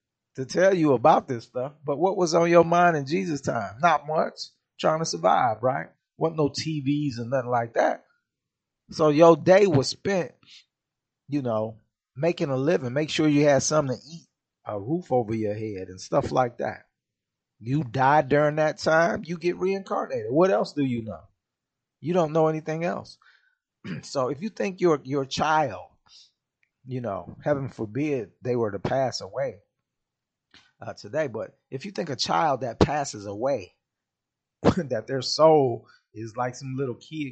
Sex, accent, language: male, American, English